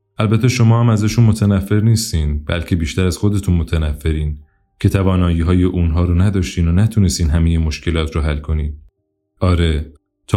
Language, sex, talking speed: Persian, male, 150 wpm